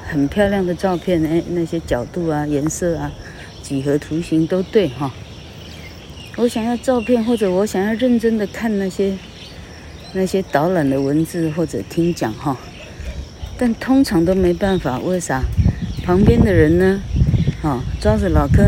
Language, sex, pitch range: Chinese, female, 140-190 Hz